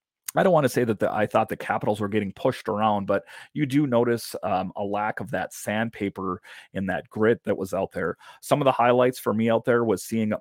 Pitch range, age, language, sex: 105-120 Hz, 30-49, English, male